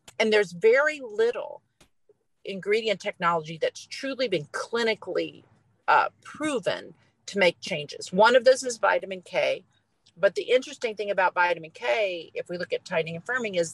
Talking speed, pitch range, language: 155 wpm, 165-245 Hz, English